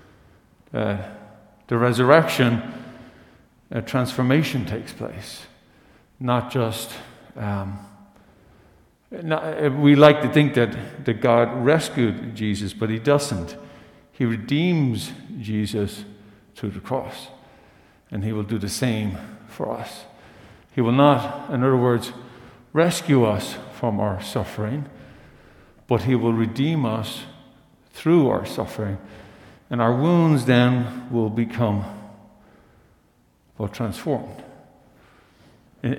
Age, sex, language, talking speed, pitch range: 50-69, male, English, 110 wpm, 110-145 Hz